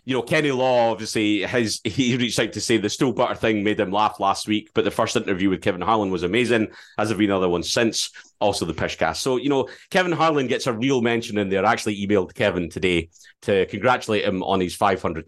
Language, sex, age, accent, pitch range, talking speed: English, male, 30-49, British, 105-155 Hz, 235 wpm